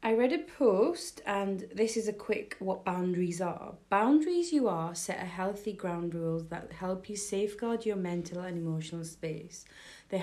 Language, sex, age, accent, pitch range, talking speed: English, female, 30-49, British, 165-210 Hz, 175 wpm